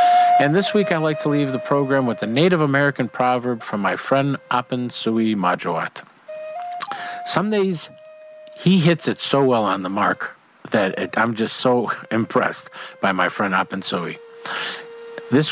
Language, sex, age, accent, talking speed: English, male, 50-69, American, 150 wpm